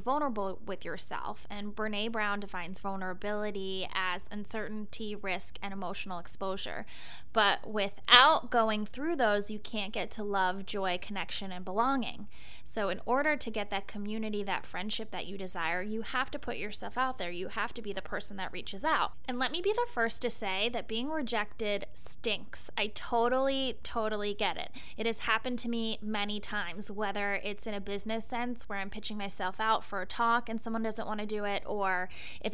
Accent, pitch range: American, 195-230 Hz